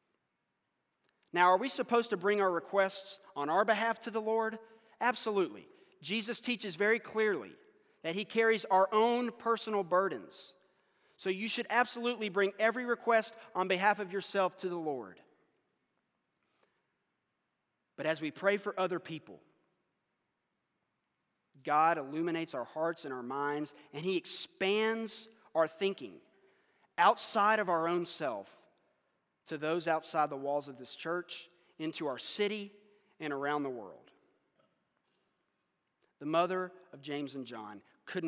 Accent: American